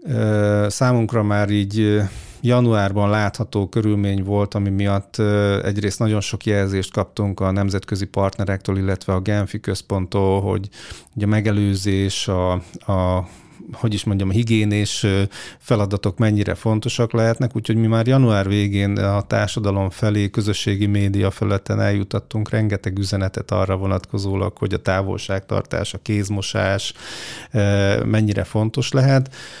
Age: 30-49